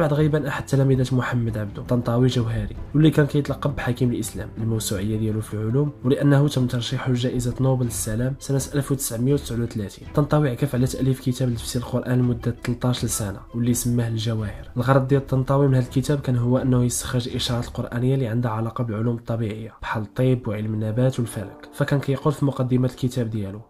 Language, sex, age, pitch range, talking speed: Arabic, male, 20-39, 115-130 Hz, 170 wpm